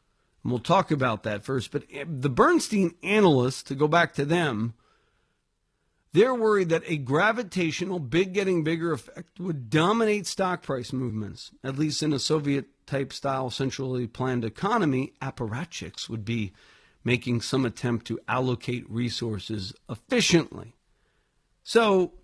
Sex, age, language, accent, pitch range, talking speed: male, 50-69, English, American, 120-175 Hz, 130 wpm